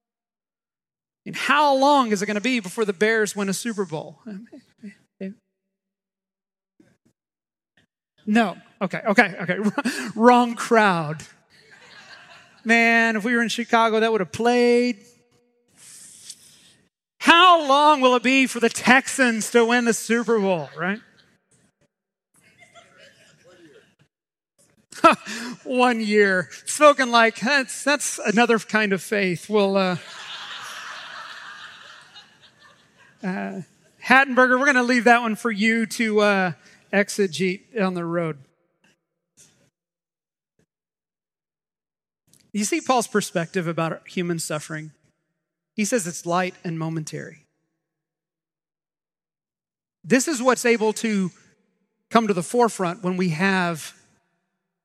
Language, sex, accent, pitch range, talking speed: English, male, American, 175-235 Hz, 105 wpm